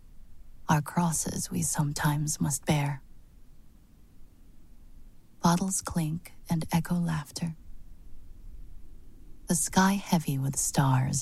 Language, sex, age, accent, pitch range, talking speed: English, female, 30-49, American, 130-160 Hz, 85 wpm